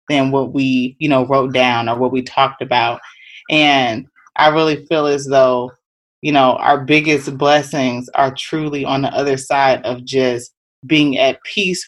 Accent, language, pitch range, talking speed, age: American, English, 130-150 Hz, 170 wpm, 30-49